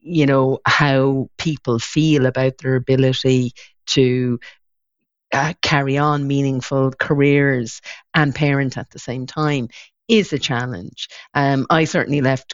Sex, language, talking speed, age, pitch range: female, English, 130 wpm, 40-59, 130-155 Hz